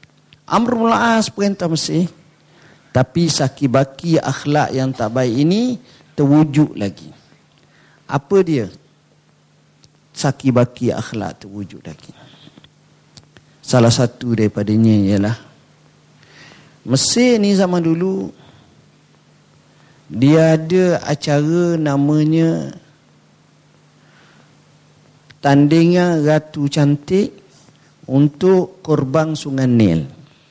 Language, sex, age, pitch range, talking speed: Malay, male, 50-69, 140-175 Hz, 80 wpm